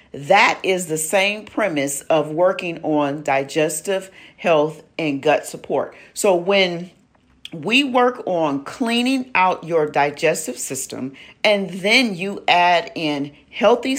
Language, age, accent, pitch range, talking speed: English, 40-59, American, 155-210 Hz, 125 wpm